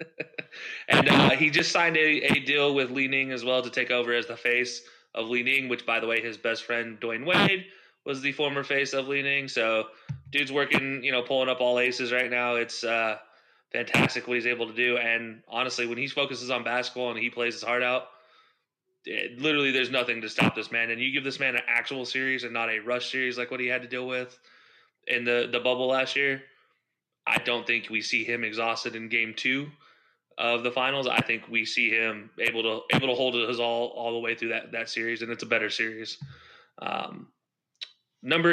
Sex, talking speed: male, 220 wpm